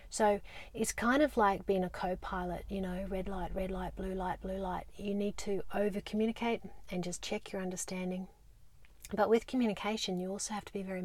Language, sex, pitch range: English, female, 180-200 Hz